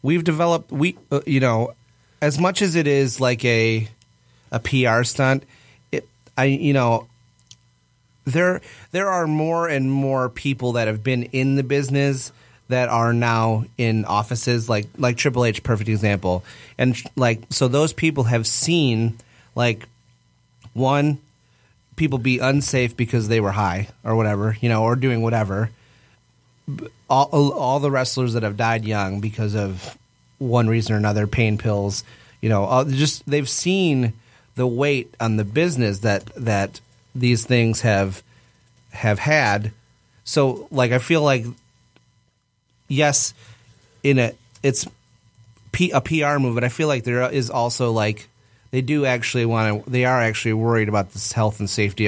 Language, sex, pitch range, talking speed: English, male, 110-135 Hz, 155 wpm